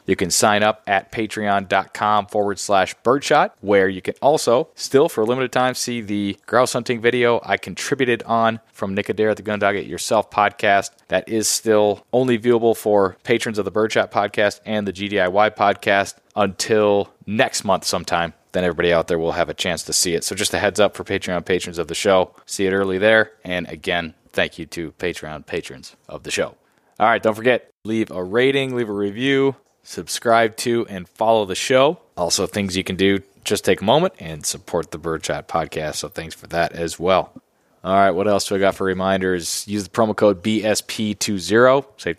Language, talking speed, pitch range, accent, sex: English, 200 wpm, 95-110 Hz, American, male